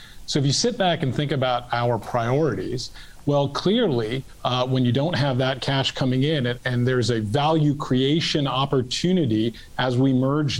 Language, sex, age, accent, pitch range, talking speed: English, male, 40-59, American, 120-145 Hz, 175 wpm